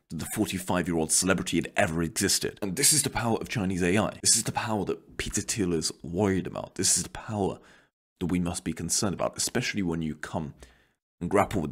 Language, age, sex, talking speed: English, 30-49, male, 210 wpm